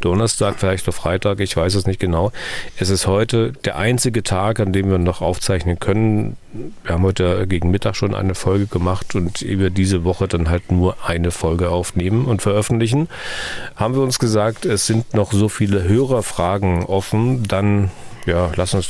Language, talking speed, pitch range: German, 180 wpm, 90-110 Hz